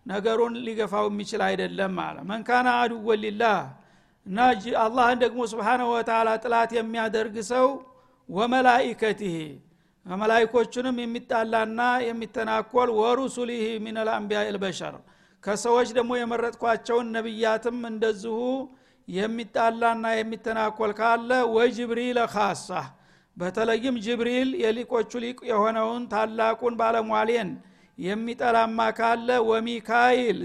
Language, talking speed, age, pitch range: Amharic, 80 wpm, 60-79, 220-240 Hz